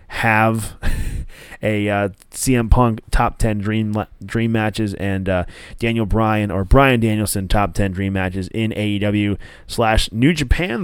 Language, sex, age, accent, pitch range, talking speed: English, male, 20-39, American, 100-140 Hz, 145 wpm